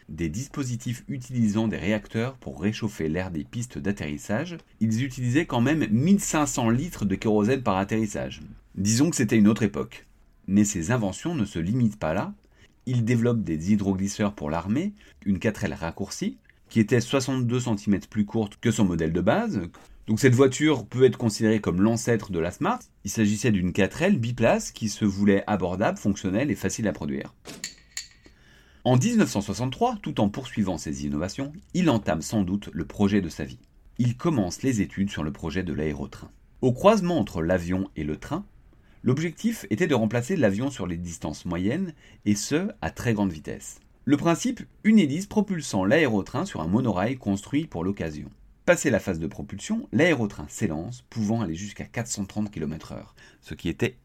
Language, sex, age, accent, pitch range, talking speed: French, male, 40-59, French, 95-125 Hz, 170 wpm